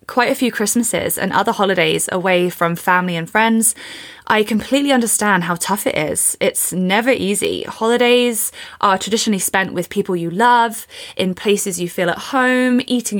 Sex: female